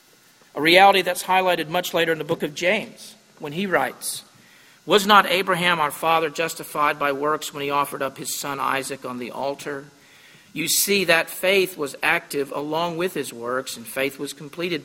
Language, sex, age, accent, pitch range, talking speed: English, male, 50-69, American, 135-180 Hz, 185 wpm